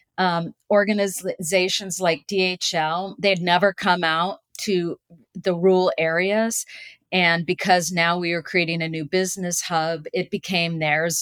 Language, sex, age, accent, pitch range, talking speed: English, female, 40-59, American, 165-195 Hz, 135 wpm